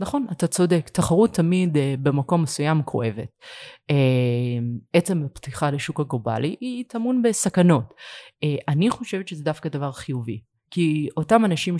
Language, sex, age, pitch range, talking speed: Hebrew, female, 30-49, 130-160 Hz, 135 wpm